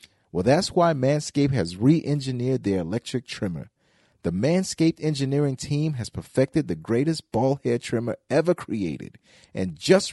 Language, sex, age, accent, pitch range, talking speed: English, male, 40-59, American, 115-150 Hz, 140 wpm